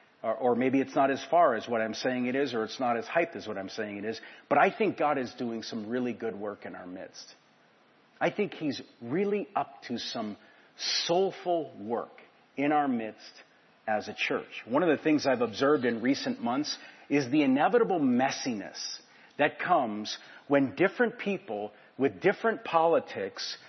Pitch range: 130-200 Hz